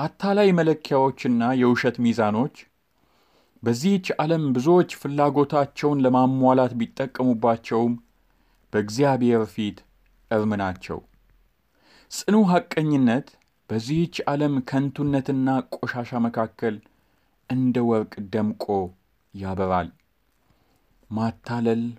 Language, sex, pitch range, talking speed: Amharic, male, 105-135 Hz, 70 wpm